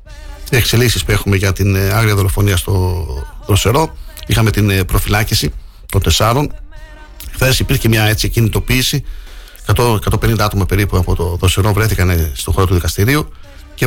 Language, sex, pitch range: Greek, male, 95-115 Hz